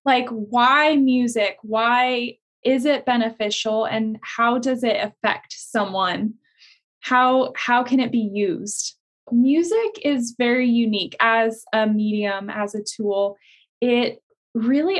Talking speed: 125 wpm